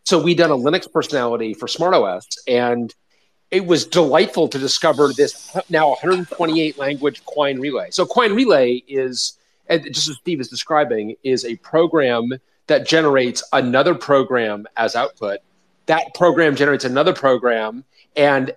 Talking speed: 140 wpm